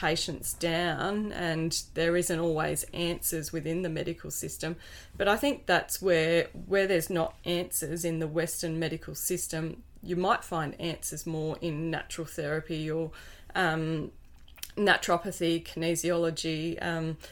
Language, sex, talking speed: English, female, 130 wpm